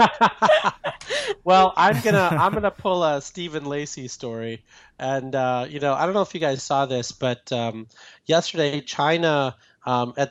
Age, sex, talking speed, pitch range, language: 30-49, male, 175 wpm, 115-145 Hz, English